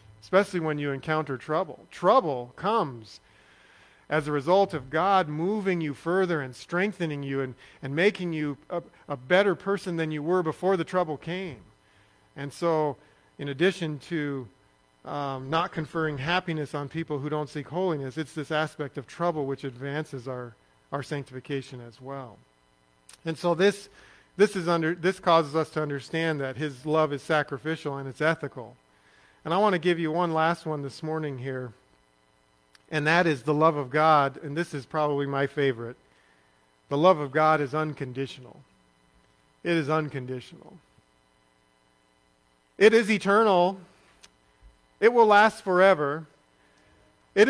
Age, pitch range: 40-59, 130-180 Hz